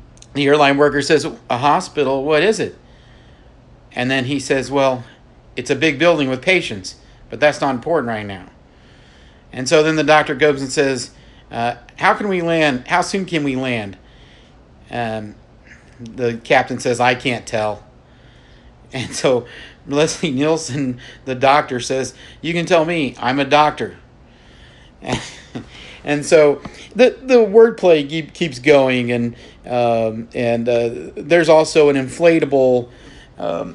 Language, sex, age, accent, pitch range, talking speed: English, male, 50-69, American, 115-145 Hz, 145 wpm